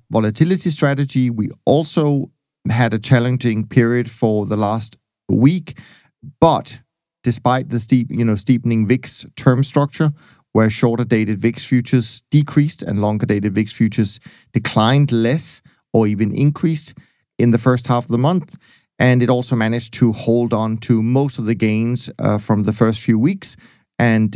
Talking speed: 160 wpm